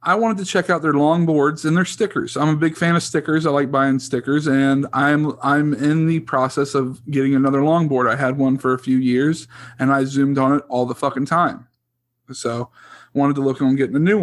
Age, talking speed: 40-59, 235 wpm